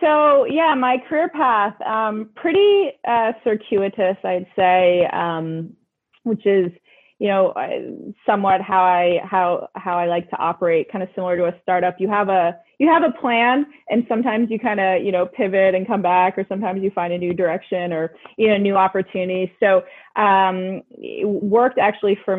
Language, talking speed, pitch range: English, 175 wpm, 175-215 Hz